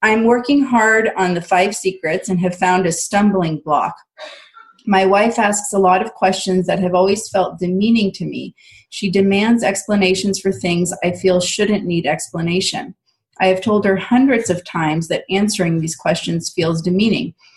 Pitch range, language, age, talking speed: 170-205 Hz, English, 30-49, 170 wpm